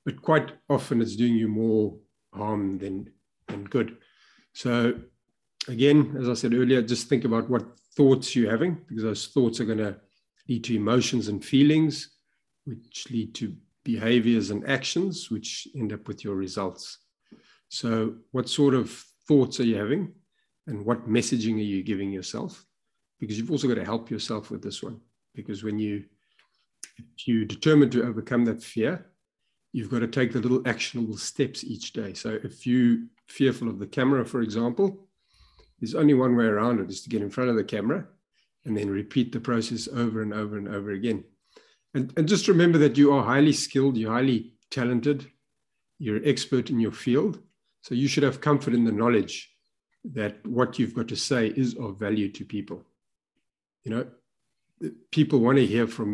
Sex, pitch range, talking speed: male, 110-135 Hz, 180 wpm